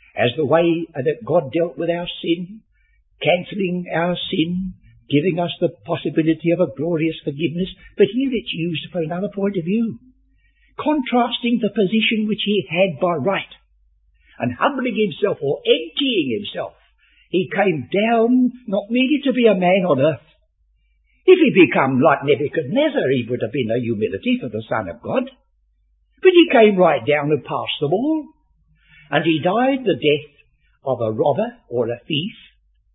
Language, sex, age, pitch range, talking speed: English, male, 60-79, 155-225 Hz, 165 wpm